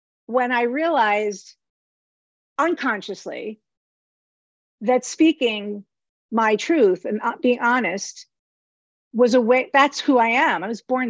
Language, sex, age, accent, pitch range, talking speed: English, female, 50-69, American, 190-240 Hz, 115 wpm